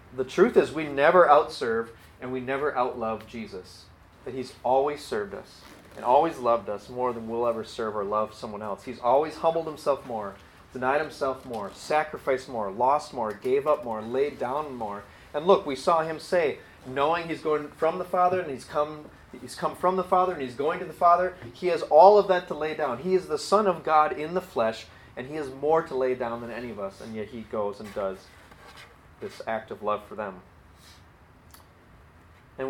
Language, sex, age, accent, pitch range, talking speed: English, male, 30-49, American, 105-150 Hz, 210 wpm